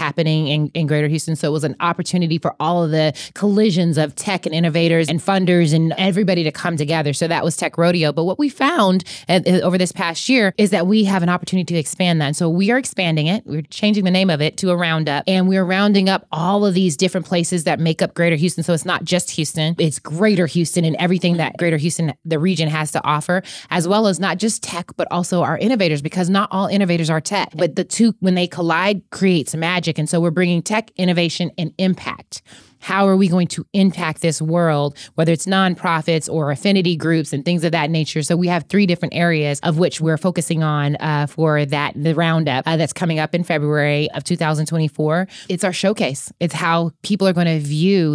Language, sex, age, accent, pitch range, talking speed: English, female, 20-39, American, 160-185 Hz, 225 wpm